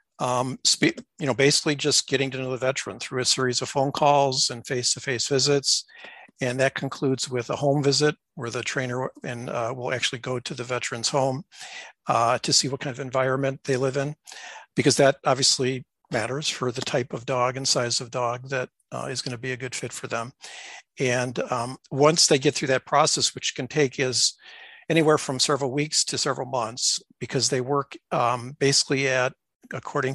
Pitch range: 125-145 Hz